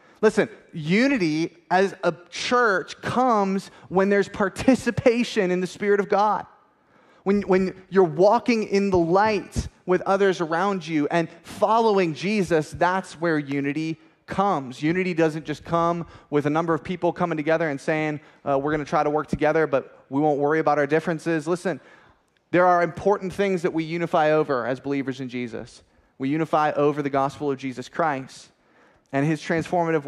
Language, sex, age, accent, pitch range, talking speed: English, male, 20-39, American, 140-175 Hz, 165 wpm